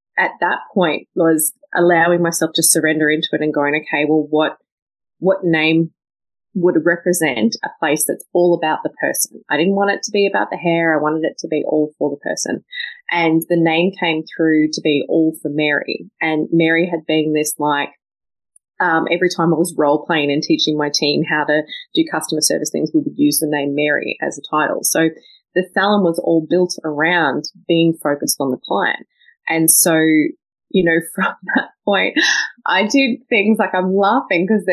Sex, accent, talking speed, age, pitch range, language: female, Australian, 195 wpm, 20-39, 155-185 Hz, English